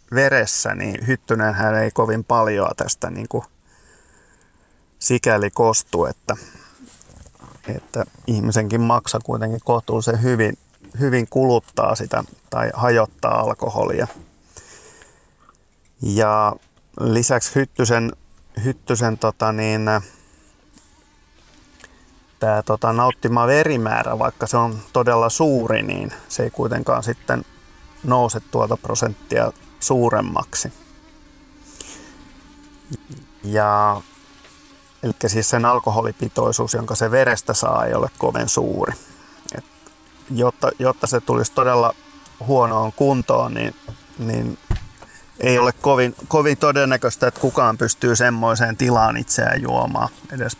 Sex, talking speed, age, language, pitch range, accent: male, 95 wpm, 30-49, Finnish, 110-130 Hz, native